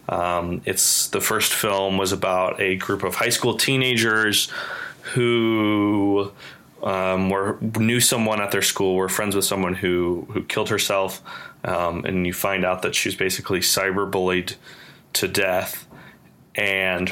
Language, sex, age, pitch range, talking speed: English, male, 20-39, 90-105 Hz, 145 wpm